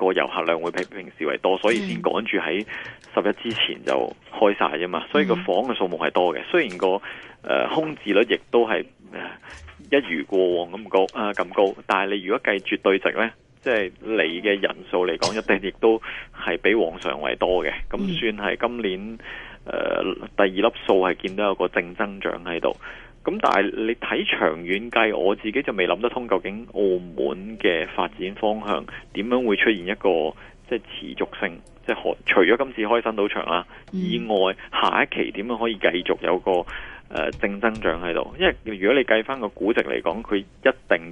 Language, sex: Chinese, male